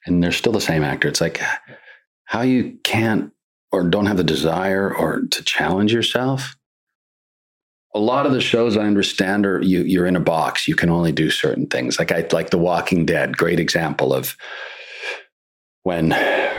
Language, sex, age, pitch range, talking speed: English, male, 40-59, 75-100 Hz, 175 wpm